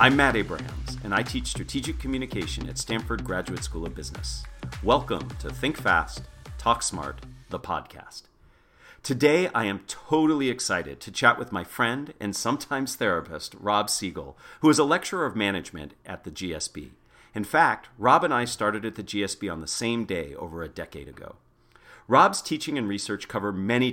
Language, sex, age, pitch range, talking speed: English, male, 40-59, 90-120 Hz, 175 wpm